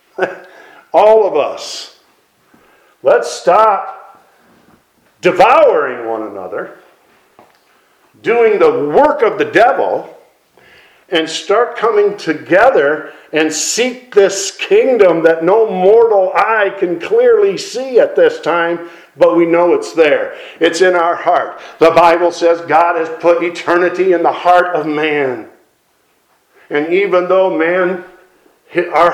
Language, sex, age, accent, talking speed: English, male, 50-69, American, 120 wpm